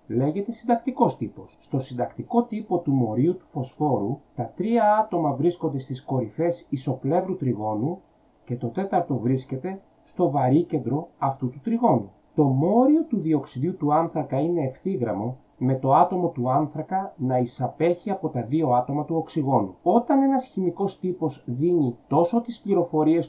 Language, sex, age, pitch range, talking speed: Greek, male, 40-59, 135-190 Hz, 145 wpm